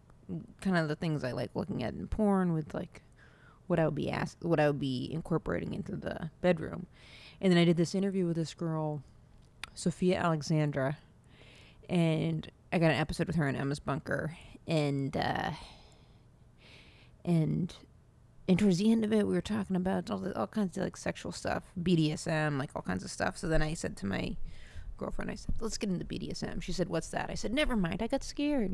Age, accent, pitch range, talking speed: 30-49, American, 155-195 Hz, 200 wpm